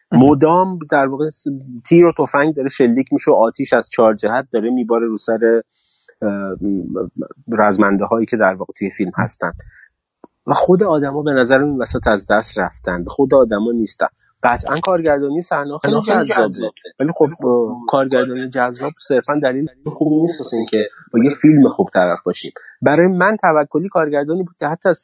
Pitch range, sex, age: 115-170 Hz, male, 30-49